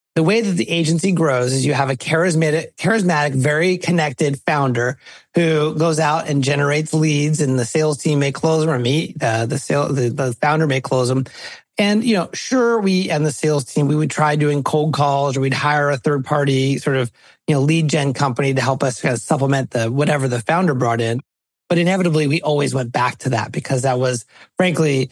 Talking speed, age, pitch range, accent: 215 wpm, 30-49, 135-165 Hz, American